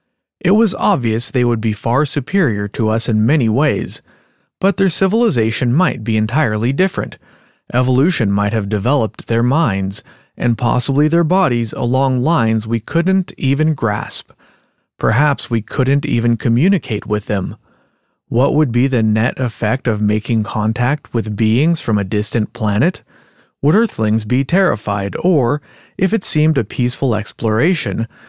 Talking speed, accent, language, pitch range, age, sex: 145 wpm, American, English, 110-155 Hz, 40-59, male